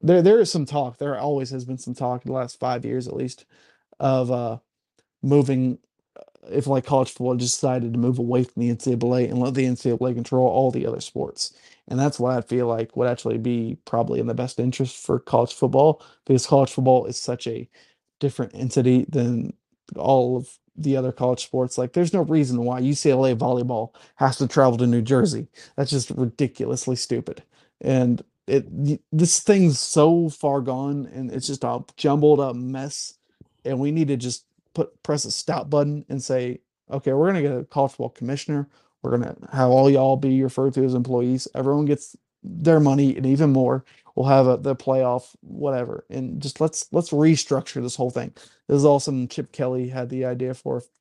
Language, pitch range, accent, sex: English, 125-140 Hz, American, male